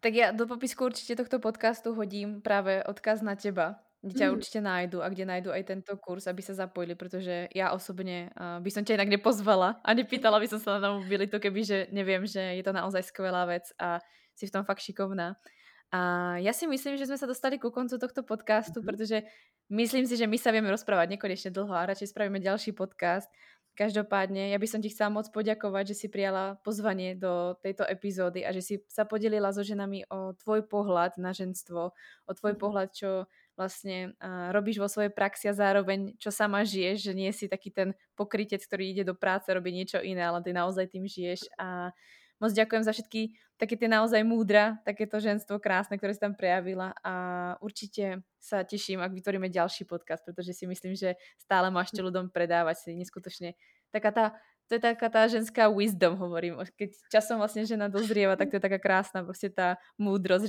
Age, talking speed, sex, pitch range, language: 20-39, 200 wpm, female, 185-215 Hz, Slovak